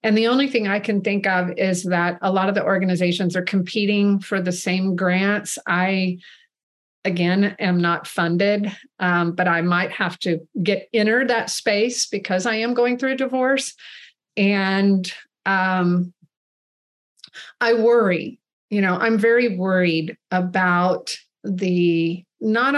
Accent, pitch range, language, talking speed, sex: American, 180-220 Hz, English, 145 wpm, female